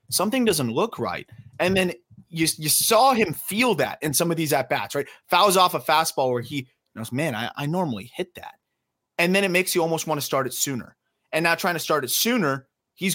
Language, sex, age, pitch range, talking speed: English, male, 30-49, 135-175 Hz, 230 wpm